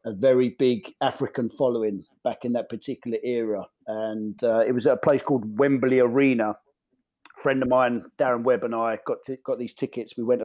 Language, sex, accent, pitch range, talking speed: English, male, British, 110-135 Hz, 200 wpm